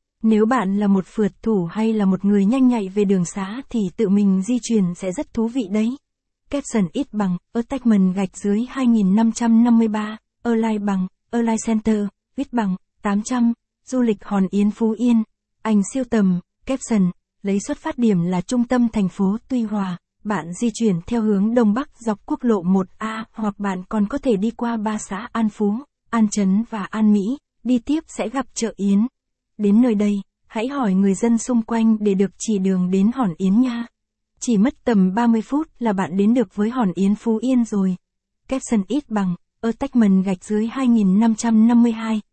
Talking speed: 190 wpm